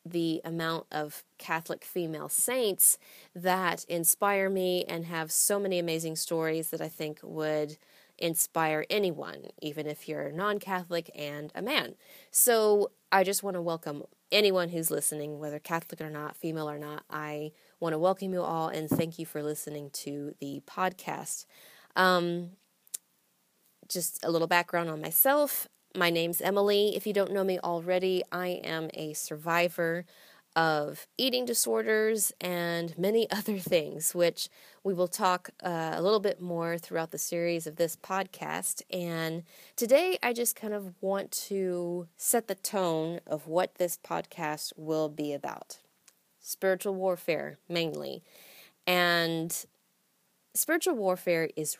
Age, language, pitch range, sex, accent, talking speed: 20-39, English, 160-190 Hz, female, American, 145 wpm